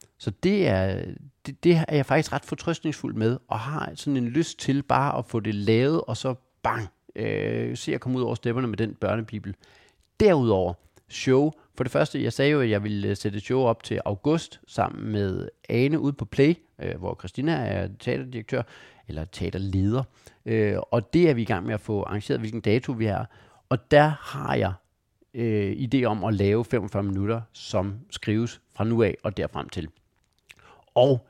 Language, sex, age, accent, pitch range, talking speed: Danish, male, 40-59, native, 105-140 Hz, 190 wpm